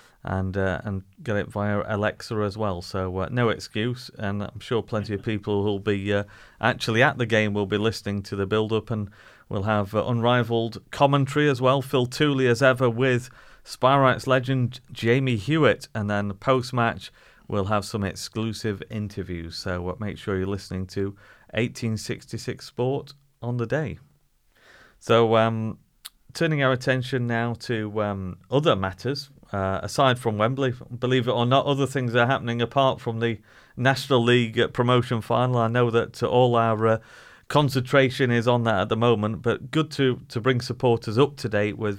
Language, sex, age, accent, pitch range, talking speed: English, male, 30-49, British, 100-125 Hz, 175 wpm